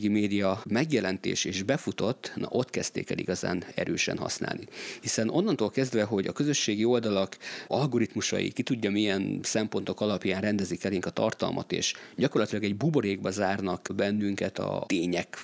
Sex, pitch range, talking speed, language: male, 95-115 Hz, 145 wpm, Hungarian